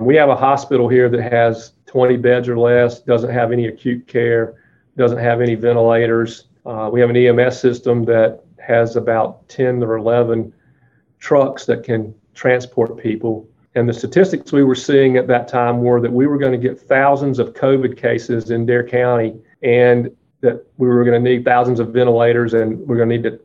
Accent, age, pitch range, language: American, 40-59, 115-130 Hz, English